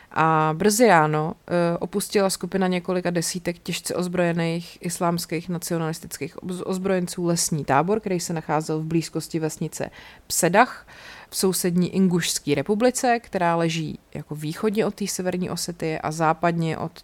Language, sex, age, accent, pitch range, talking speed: Czech, female, 30-49, native, 160-190 Hz, 125 wpm